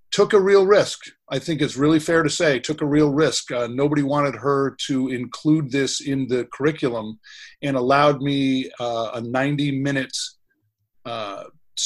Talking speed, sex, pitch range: 165 wpm, male, 120-145 Hz